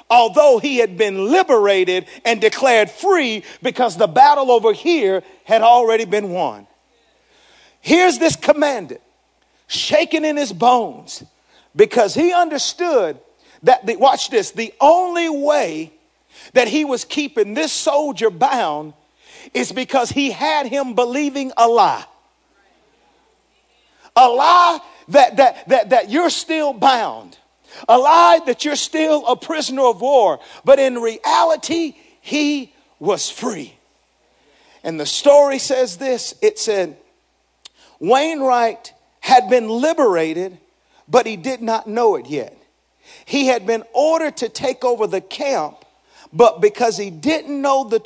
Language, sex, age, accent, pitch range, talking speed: English, male, 50-69, American, 230-310 Hz, 130 wpm